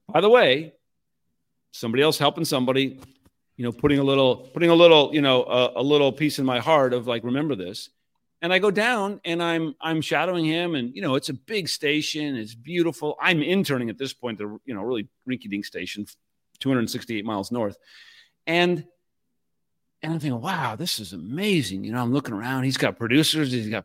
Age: 40-59